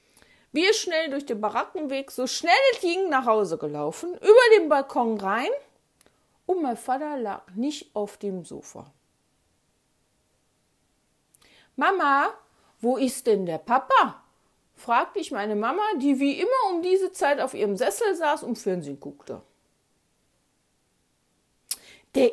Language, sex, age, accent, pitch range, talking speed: German, female, 50-69, German, 230-365 Hz, 130 wpm